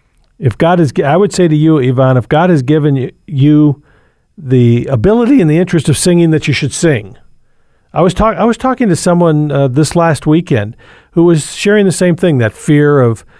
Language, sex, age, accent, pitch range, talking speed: English, male, 50-69, American, 125-170 Hz, 205 wpm